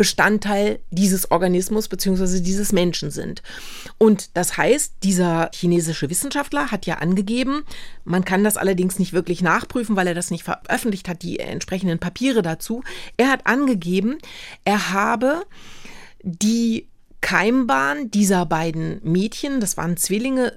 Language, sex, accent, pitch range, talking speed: German, female, German, 185-245 Hz, 135 wpm